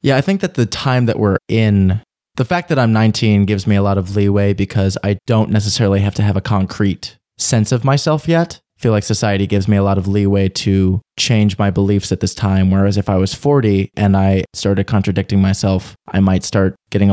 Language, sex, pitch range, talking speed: English, male, 100-115 Hz, 225 wpm